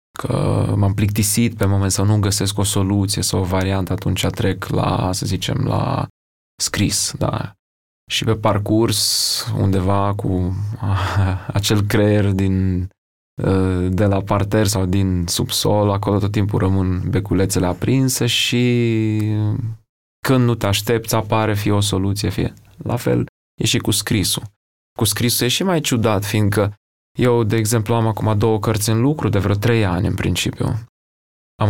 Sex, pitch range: male, 95-115 Hz